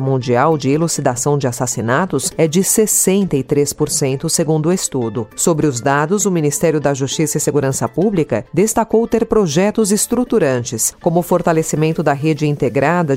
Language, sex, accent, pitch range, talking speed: Portuguese, female, Brazilian, 140-190 Hz, 140 wpm